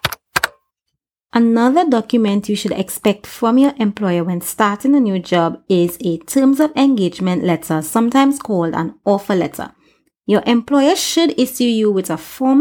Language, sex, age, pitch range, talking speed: English, female, 30-49, 185-245 Hz, 150 wpm